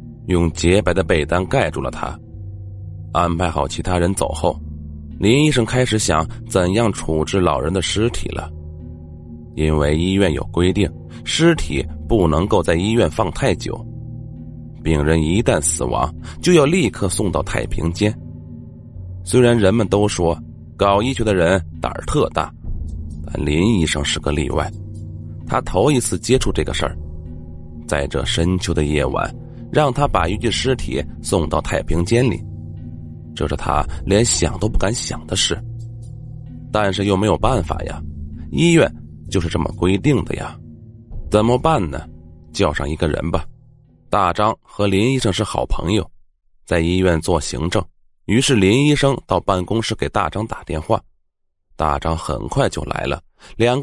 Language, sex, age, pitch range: Chinese, male, 30-49, 80-110 Hz